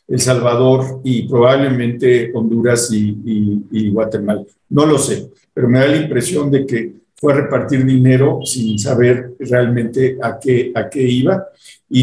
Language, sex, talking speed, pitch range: Spanish, male, 160 wpm, 125-155 Hz